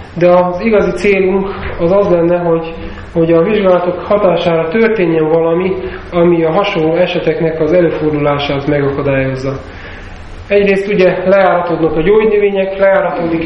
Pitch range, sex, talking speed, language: 155-190 Hz, male, 120 wpm, Hungarian